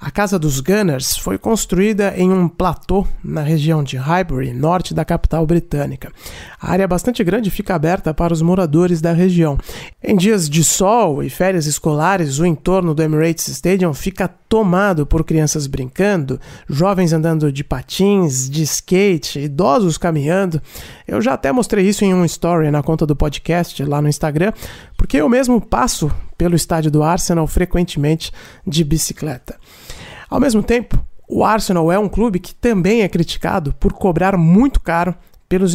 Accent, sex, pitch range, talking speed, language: Brazilian, male, 155-195 Hz, 160 wpm, Portuguese